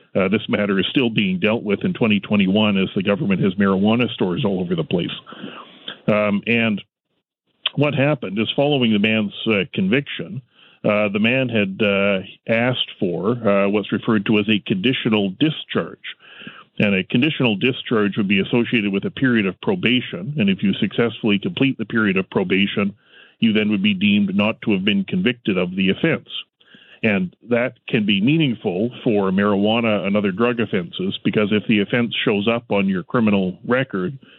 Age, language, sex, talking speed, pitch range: 40-59, English, male, 175 wpm, 100-120 Hz